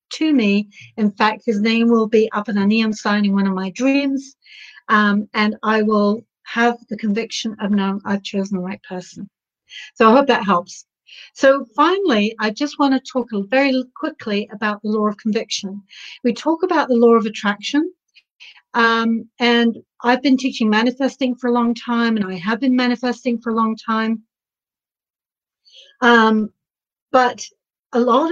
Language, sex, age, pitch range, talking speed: English, female, 60-79, 210-260 Hz, 170 wpm